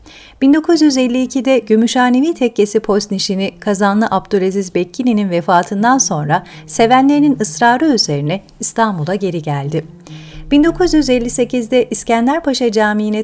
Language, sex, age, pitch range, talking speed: Turkish, female, 40-59, 180-250 Hz, 85 wpm